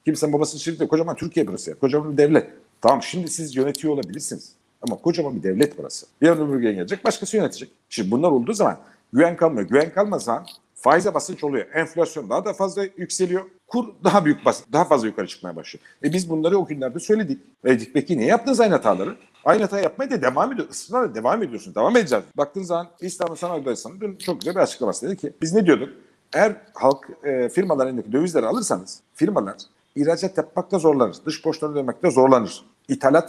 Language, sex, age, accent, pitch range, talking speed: Turkish, male, 50-69, native, 145-195 Hz, 185 wpm